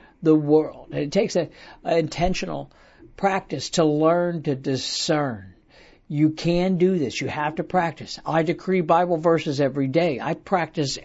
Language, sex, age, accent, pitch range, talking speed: English, male, 60-79, American, 150-185 Hz, 145 wpm